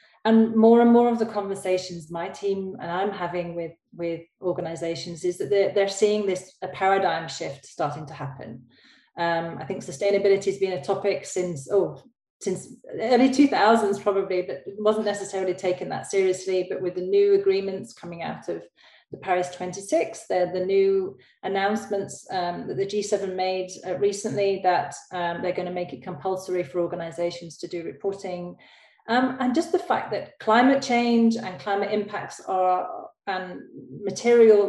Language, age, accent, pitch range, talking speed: English, 30-49, British, 175-205 Hz, 170 wpm